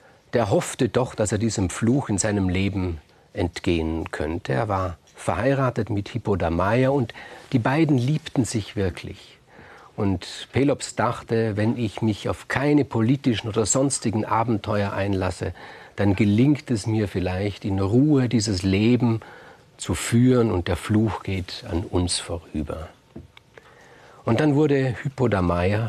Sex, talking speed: male, 135 wpm